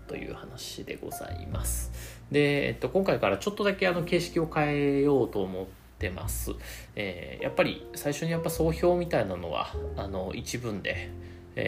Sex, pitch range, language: male, 90-130 Hz, Japanese